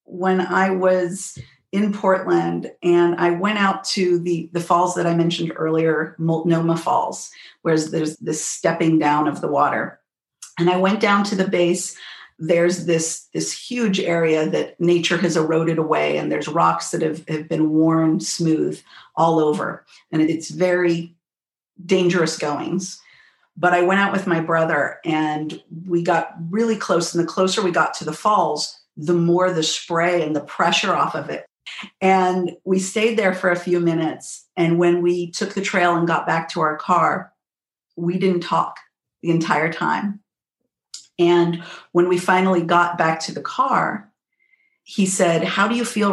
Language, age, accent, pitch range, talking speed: English, 50-69, American, 165-190 Hz, 170 wpm